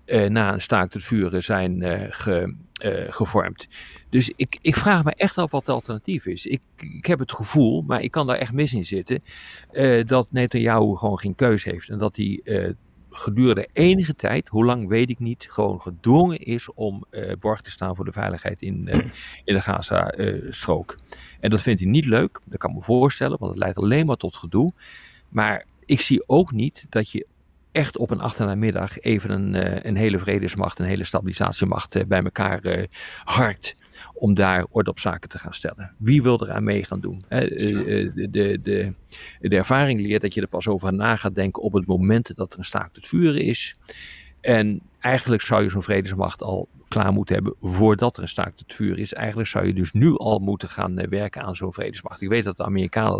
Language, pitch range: Dutch, 95-115 Hz